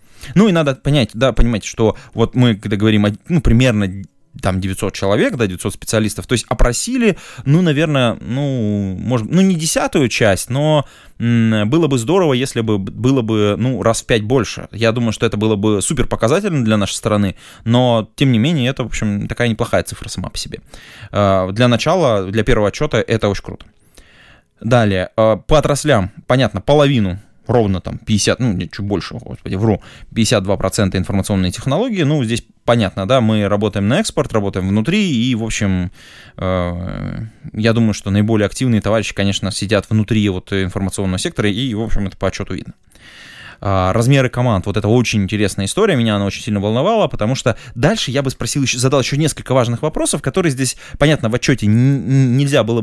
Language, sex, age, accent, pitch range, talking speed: Russian, male, 20-39, native, 105-135 Hz, 175 wpm